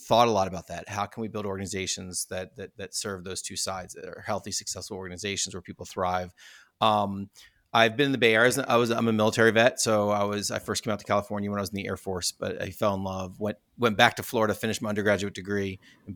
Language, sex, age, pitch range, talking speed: English, male, 30-49, 95-115 Hz, 265 wpm